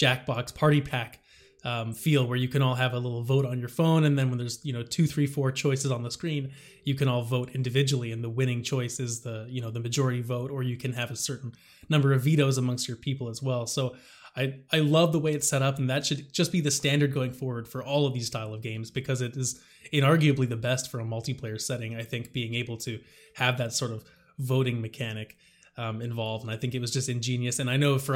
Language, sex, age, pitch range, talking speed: English, male, 20-39, 125-145 Hz, 250 wpm